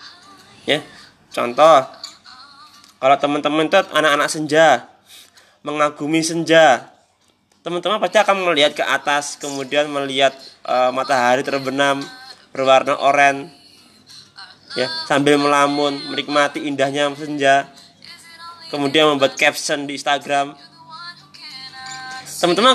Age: 20-39